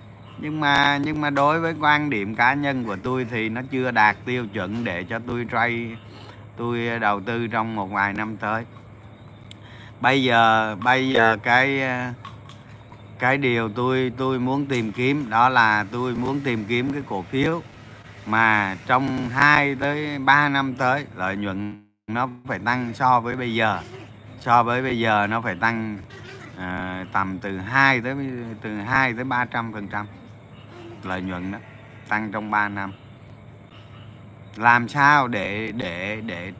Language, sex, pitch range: Vietnamese, male, 105-130 Hz